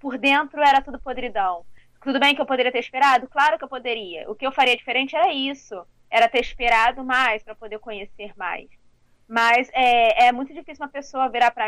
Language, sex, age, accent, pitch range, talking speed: Portuguese, female, 20-39, Brazilian, 240-295 Hz, 205 wpm